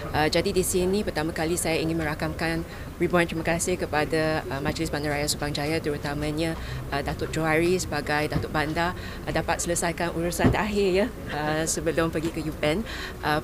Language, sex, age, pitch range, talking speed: Malay, female, 20-39, 165-215 Hz, 165 wpm